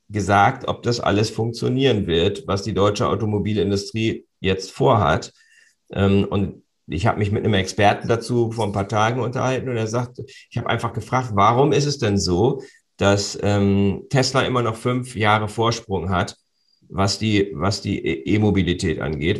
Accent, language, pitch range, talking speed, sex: German, German, 95-120 Hz, 160 wpm, male